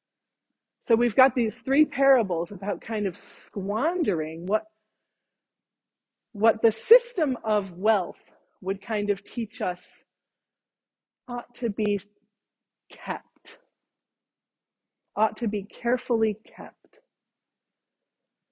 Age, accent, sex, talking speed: 40-59, American, female, 95 wpm